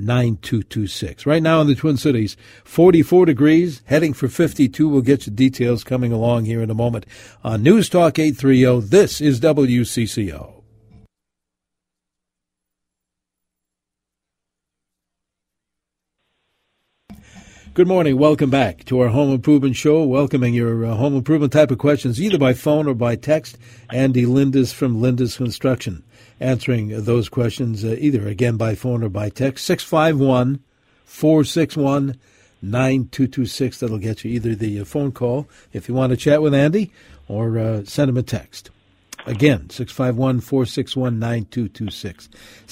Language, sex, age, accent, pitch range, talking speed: English, male, 60-79, American, 115-145 Hz, 130 wpm